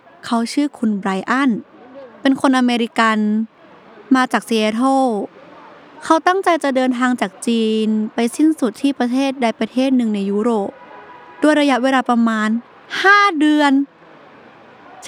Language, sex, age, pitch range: Thai, female, 20-39, 225-300 Hz